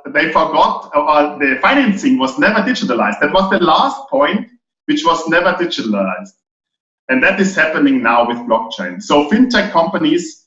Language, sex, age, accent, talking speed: English, male, 50-69, German, 155 wpm